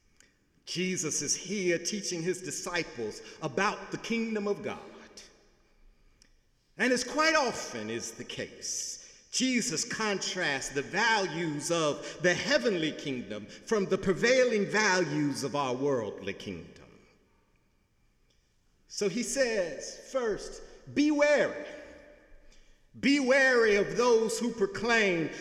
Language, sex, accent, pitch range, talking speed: English, male, American, 170-255 Hz, 110 wpm